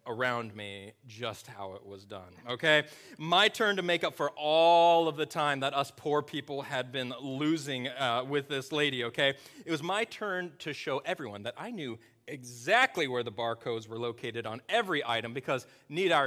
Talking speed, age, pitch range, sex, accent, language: 190 wpm, 30-49, 120-165 Hz, male, American, English